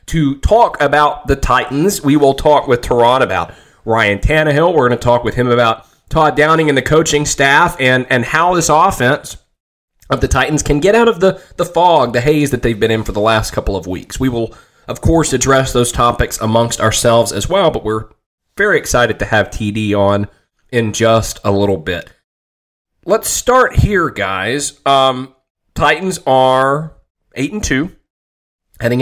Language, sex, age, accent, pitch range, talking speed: English, male, 30-49, American, 105-135 Hz, 180 wpm